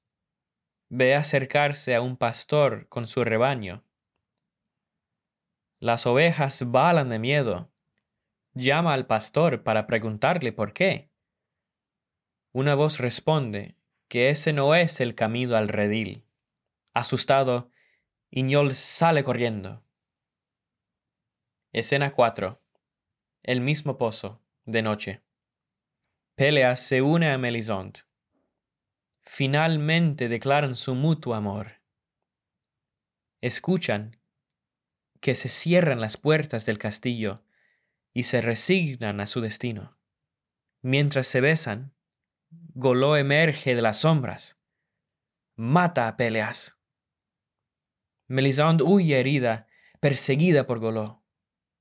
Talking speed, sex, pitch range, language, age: 95 wpm, male, 115-145 Hz, Spanish, 10-29